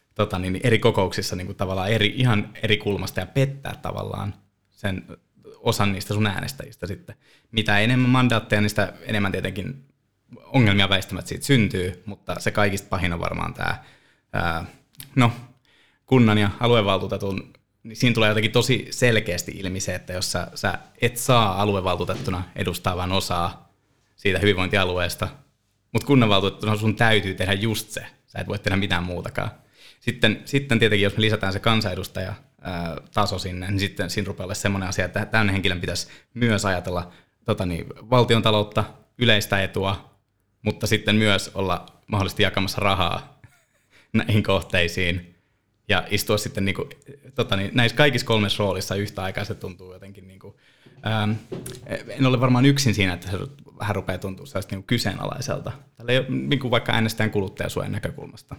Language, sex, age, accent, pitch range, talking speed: Finnish, male, 20-39, native, 95-115 Hz, 145 wpm